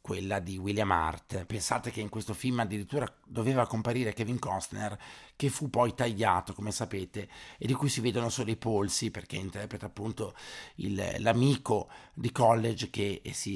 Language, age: Italian, 50-69